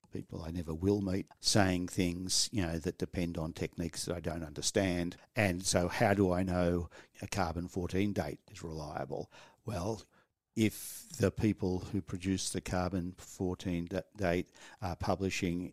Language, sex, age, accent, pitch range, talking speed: English, male, 50-69, Australian, 85-100 Hz, 150 wpm